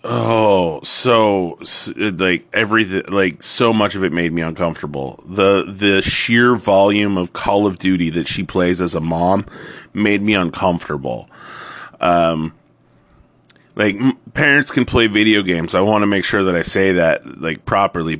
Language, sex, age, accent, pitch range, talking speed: English, male, 30-49, American, 90-110 Hz, 160 wpm